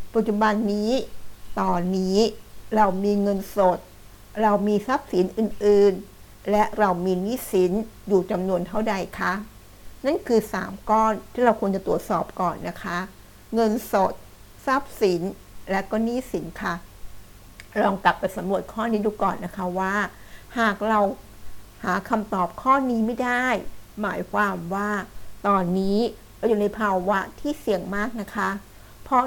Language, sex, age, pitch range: Thai, female, 60-79, 190-225 Hz